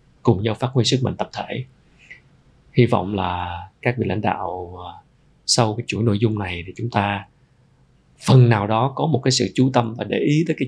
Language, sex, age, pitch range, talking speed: Vietnamese, male, 20-39, 105-130 Hz, 215 wpm